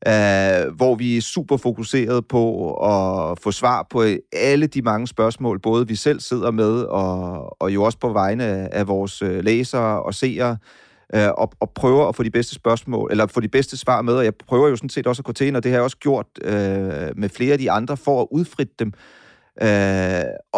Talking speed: 215 wpm